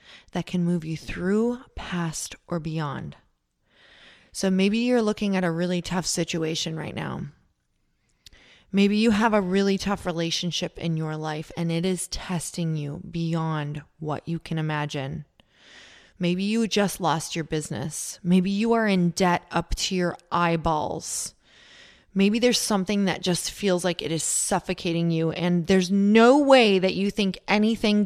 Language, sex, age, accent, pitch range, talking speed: English, female, 20-39, American, 165-200 Hz, 155 wpm